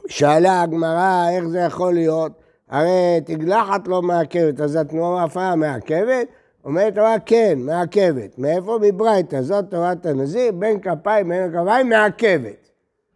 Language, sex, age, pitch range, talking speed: Hebrew, male, 60-79, 160-210 Hz, 130 wpm